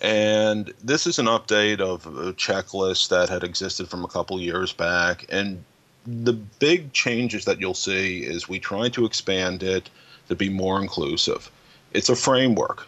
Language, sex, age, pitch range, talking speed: English, male, 30-49, 90-105 Hz, 170 wpm